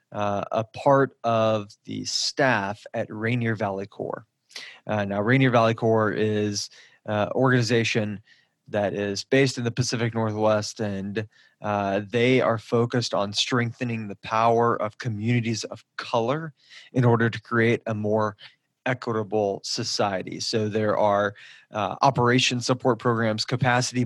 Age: 20-39